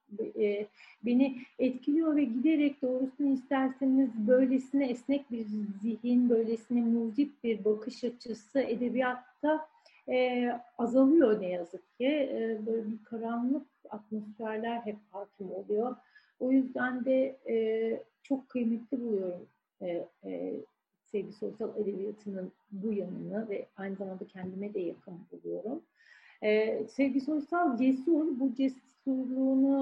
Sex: female